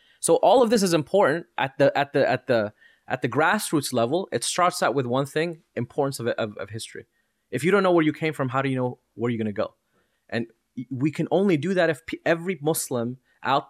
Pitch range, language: 125-165 Hz, English